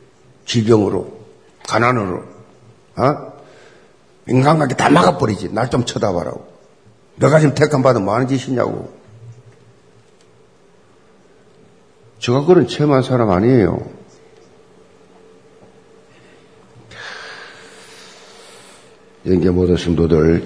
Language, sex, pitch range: Korean, male, 105-165 Hz